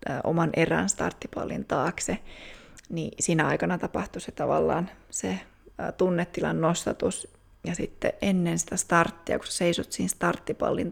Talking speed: 125 wpm